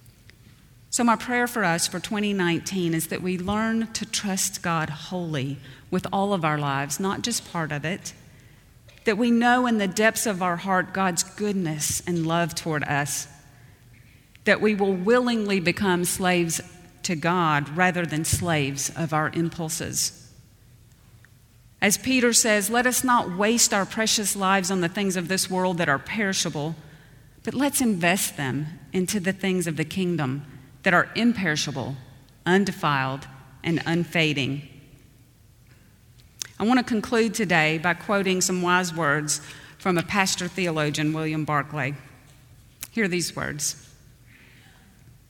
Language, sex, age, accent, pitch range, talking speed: English, female, 40-59, American, 140-195 Hz, 145 wpm